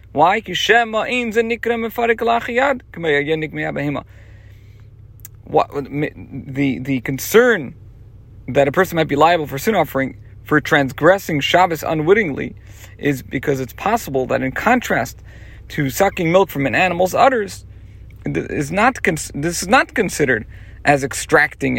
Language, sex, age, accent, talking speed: English, male, 40-59, American, 100 wpm